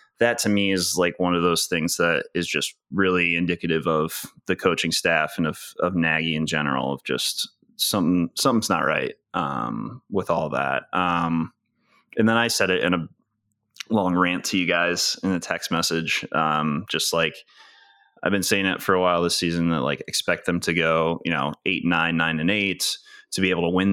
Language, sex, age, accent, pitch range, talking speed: English, male, 20-39, American, 85-95 Hz, 205 wpm